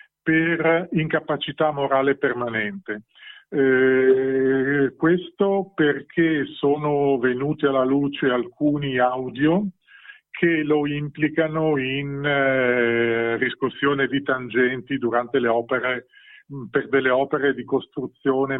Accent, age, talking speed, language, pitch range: native, 40-59, 95 wpm, Italian, 130-160 Hz